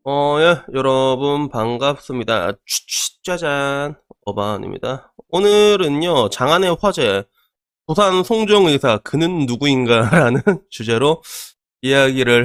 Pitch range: 120-200 Hz